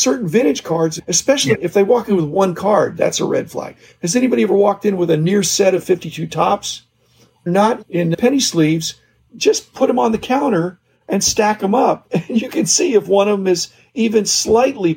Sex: male